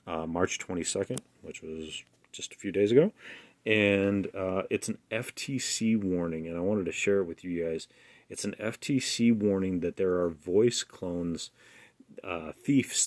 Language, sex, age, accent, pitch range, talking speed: English, male, 30-49, American, 90-110 Hz, 165 wpm